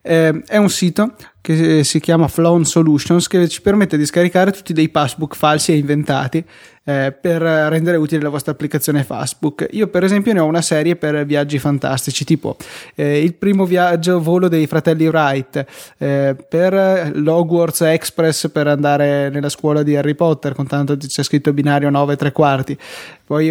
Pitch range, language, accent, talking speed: 150-175 Hz, Italian, native, 175 wpm